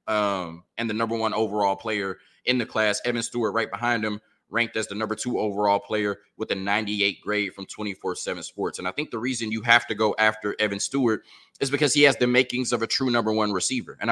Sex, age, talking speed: male, 20-39, 240 wpm